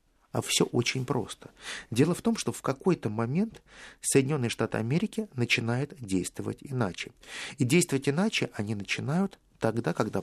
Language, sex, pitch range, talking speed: Russian, male, 115-175 Hz, 140 wpm